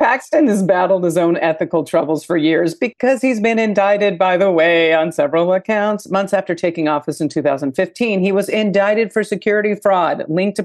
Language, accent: English, American